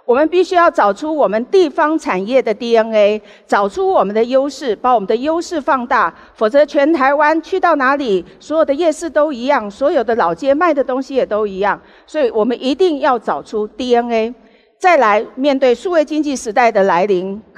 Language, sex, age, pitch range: Chinese, female, 50-69, 210-305 Hz